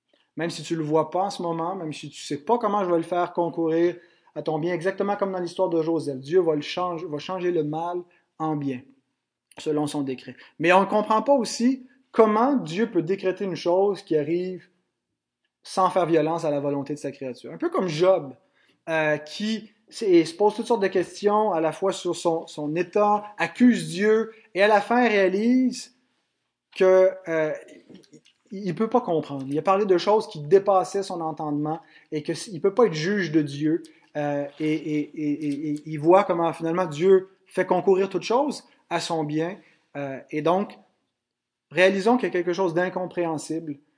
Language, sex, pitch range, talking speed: French, male, 155-195 Hz, 200 wpm